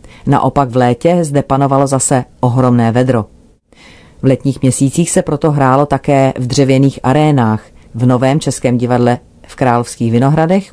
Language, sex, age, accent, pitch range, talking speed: Czech, female, 40-59, native, 120-145 Hz, 140 wpm